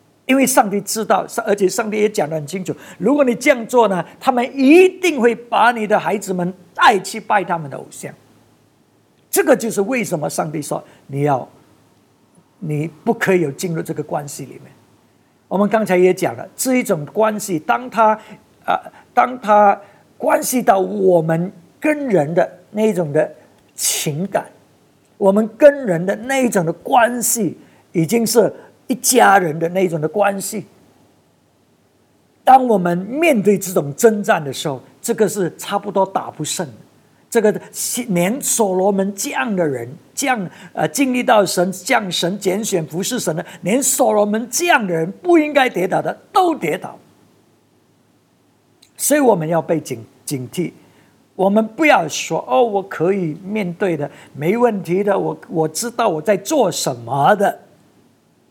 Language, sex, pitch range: English, male, 175-235 Hz